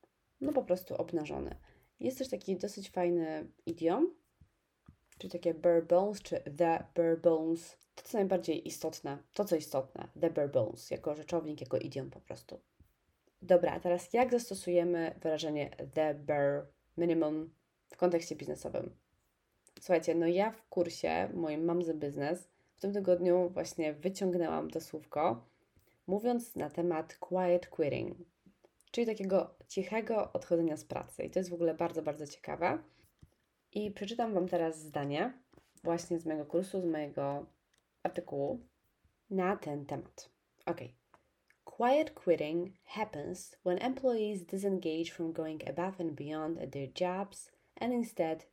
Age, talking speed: 20-39, 135 wpm